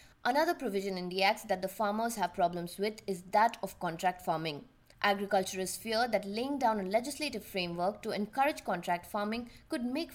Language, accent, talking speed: English, Indian, 175 wpm